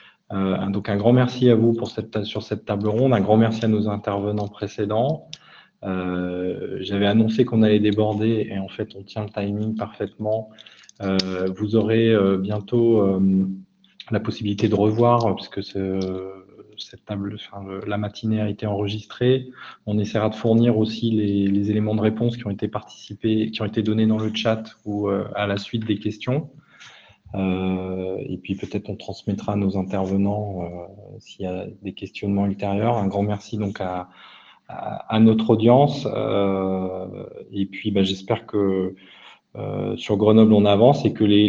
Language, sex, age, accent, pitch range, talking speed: French, male, 20-39, French, 100-110 Hz, 175 wpm